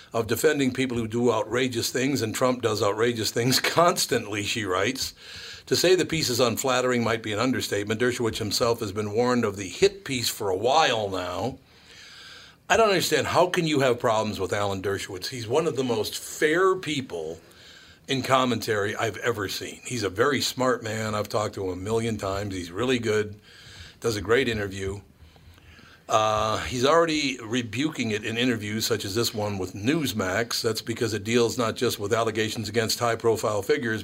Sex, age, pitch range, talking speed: male, 60-79, 105-125 Hz, 185 wpm